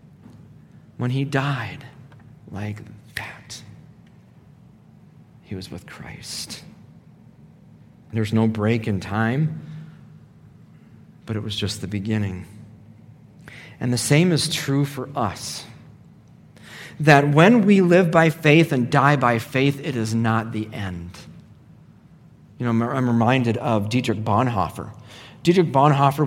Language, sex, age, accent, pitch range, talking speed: English, male, 40-59, American, 115-150 Hz, 115 wpm